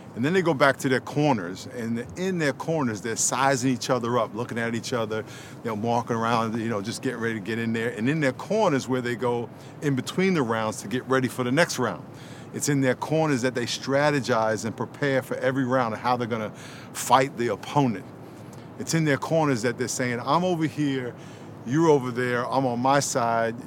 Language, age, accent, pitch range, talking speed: English, 50-69, American, 120-150 Hz, 225 wpm